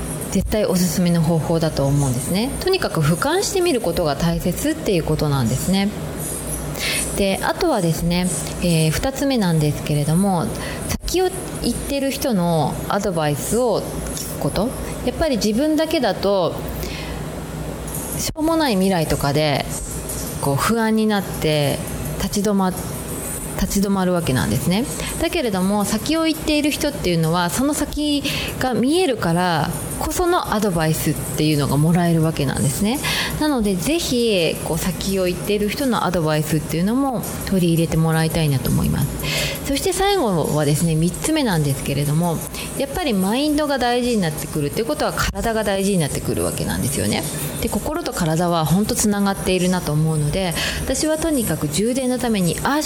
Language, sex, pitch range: Japanese, female, 160-240 Hz